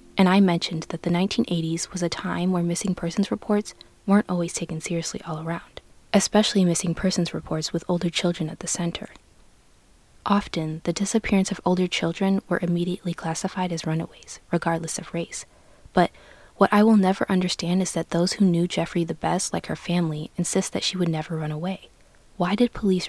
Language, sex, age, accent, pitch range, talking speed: English, female, 20-39, American, 170-200 Hz, 180 wpm